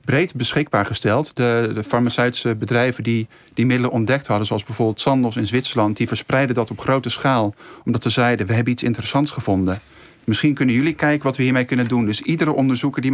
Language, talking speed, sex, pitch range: Dutch, 200 wpm, male, 110-135 Hz